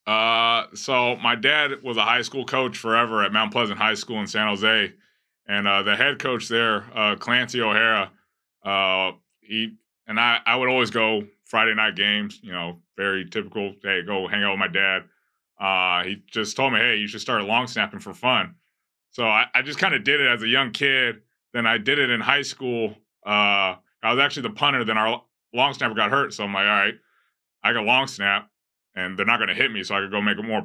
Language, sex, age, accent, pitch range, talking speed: English, male, 20-39, American, 100-125 Hz, 225 wpm